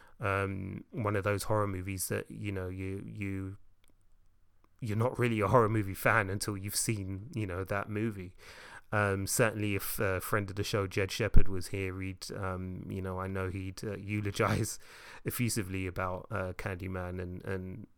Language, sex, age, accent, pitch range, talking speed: English, male, 30-49, British, 95-110 Hz, 175 wpm